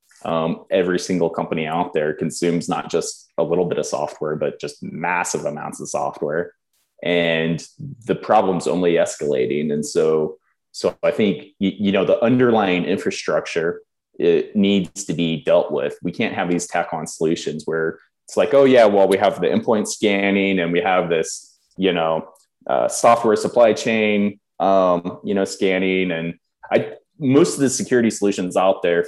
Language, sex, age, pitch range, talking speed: English, male, 20-39, 85-130 Hz, 170 wpm